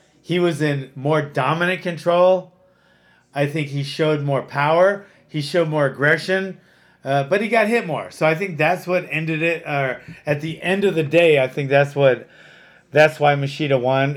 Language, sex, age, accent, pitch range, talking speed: English, male, 30-49, American, 140-175 Hz, 180 wpm